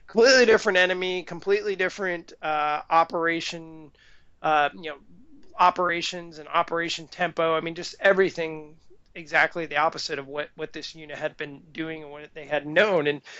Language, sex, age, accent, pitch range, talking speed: English, male, 20-39, American, 155-185 Hz, 155 wpm